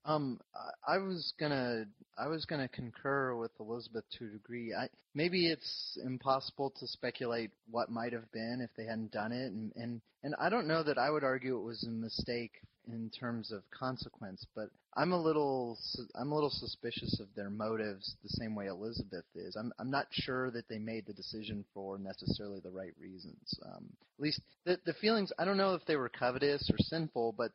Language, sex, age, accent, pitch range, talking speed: English, male, 30-49, American, 110-135 Hz, 200 wpm